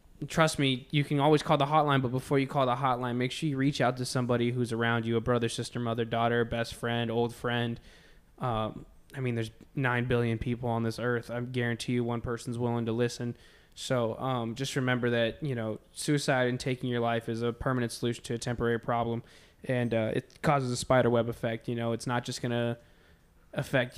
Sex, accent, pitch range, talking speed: male, American, 115-130 Hz, 215 wpm